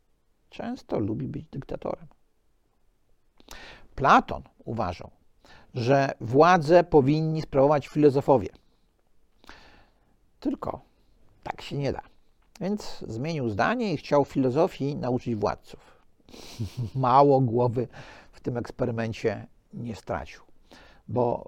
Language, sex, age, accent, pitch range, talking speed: Polish, male, 50-69, native, 125-160 Hz, 90 wpm